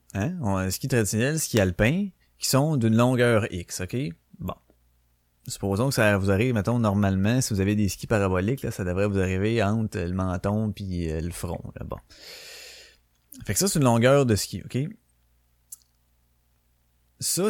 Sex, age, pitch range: male, 30-49, 90-125 Hz